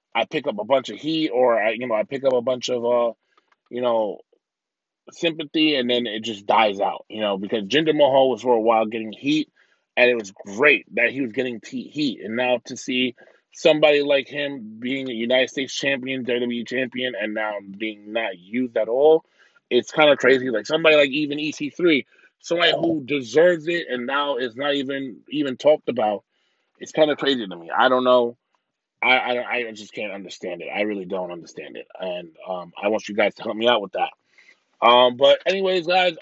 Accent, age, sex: American, 20-39, male